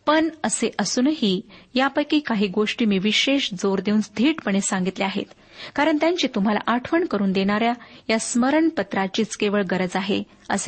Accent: native